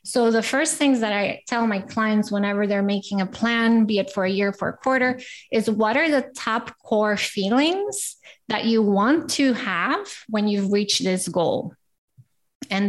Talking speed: 185 wpm